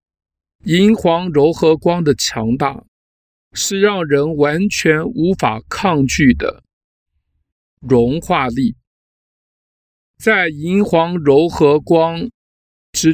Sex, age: male, 50-69